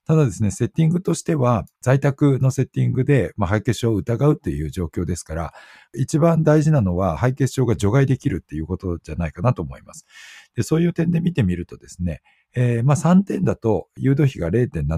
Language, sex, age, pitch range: Japanese, male, 50-69, 85-130 Hz